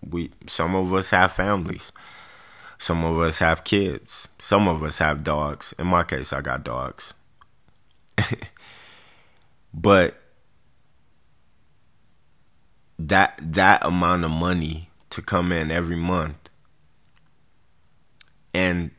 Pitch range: 80-95 Hz